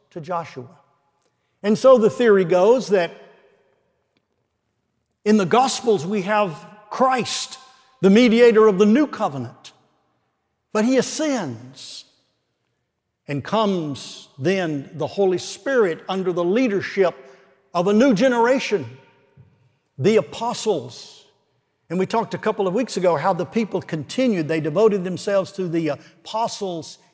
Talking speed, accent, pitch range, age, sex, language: 125 wpm, American, 145-210 Hz, 60-79, male, English